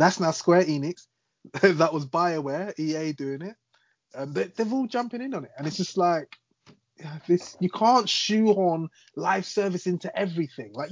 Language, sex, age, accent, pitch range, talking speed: English, male, 20-39, British, 130-185 Hz, 175 wpm